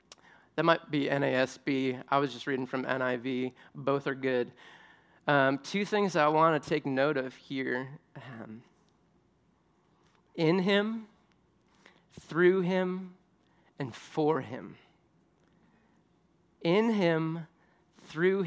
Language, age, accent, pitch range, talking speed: English, 30-49, American, 150-195 Hz, 110 wpm